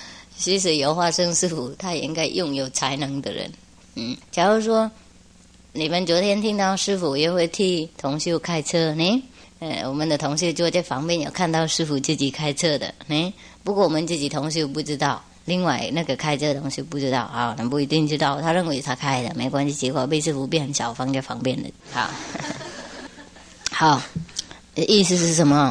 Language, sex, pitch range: English, male, 140-180 Hz